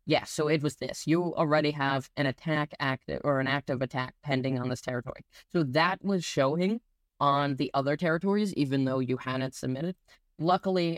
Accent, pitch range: American, 135-185 Hz